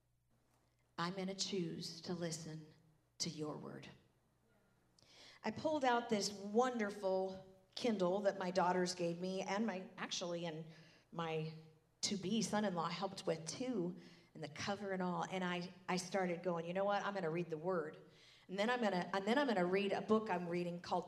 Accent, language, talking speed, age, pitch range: American, English, 175 wpm, 50-69, 190-255 Hz